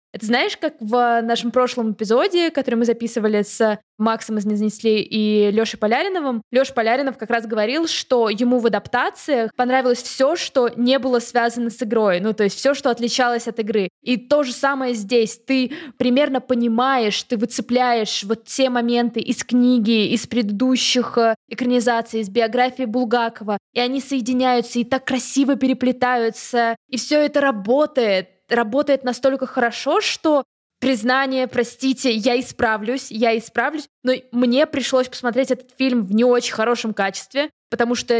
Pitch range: 230-260 Hz